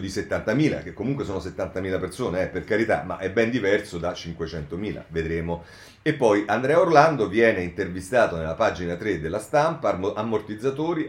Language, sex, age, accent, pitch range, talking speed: Italian, male, 40-59, native, 85-115 Hz, 155 wpm